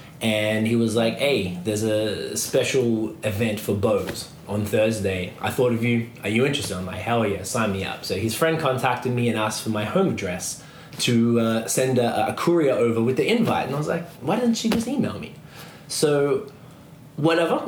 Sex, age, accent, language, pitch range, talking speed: male, 20-39, Australian, English, 110-140 Hz, 205 wpm